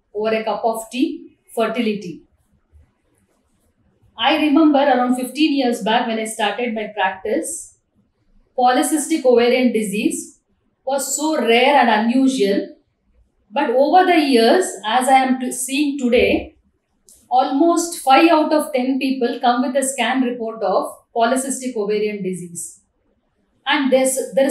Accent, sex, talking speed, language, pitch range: Indian, female, 125 wpm, English, 230-285 Hz